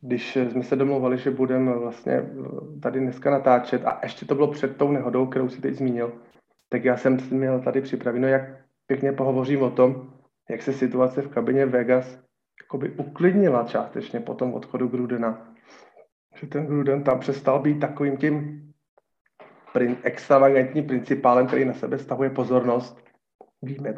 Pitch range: 125-145 Hz